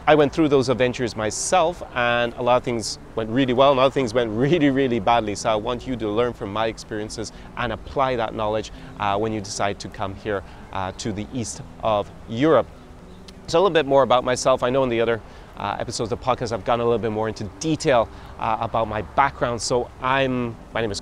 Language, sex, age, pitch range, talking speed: English, male, 30-49, 105-125 Hz, 230 wpm